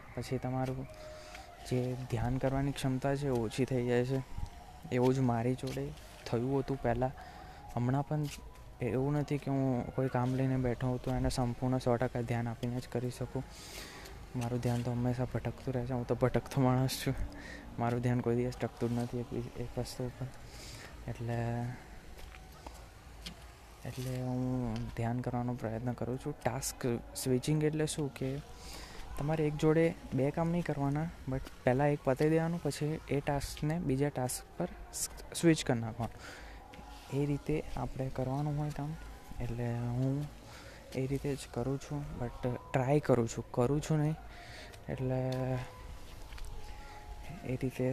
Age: 20-39